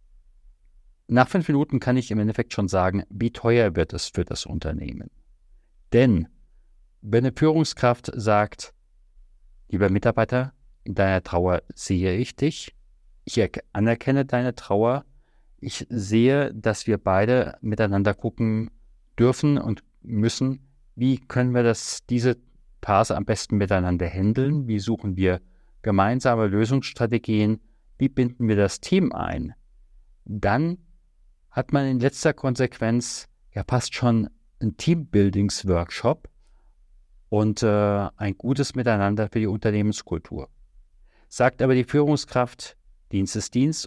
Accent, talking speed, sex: German, 125 wpm, male